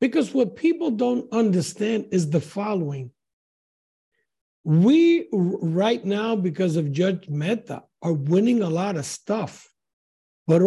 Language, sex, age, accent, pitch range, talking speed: English, male, 60-79, American, 165-230 Hz, 125 wpm